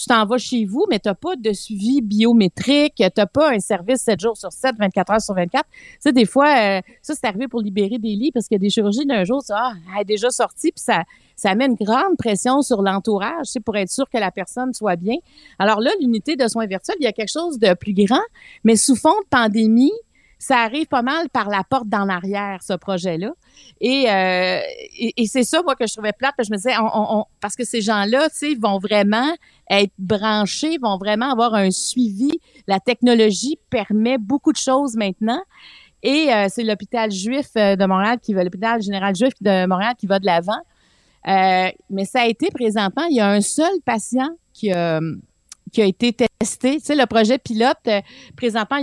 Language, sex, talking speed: French, female, 220 wpm